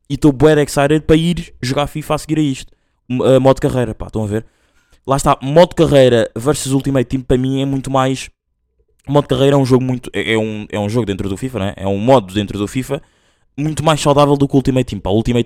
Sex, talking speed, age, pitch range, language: male, 260 wpm, 20-39, 115-165 Hz, Portuguese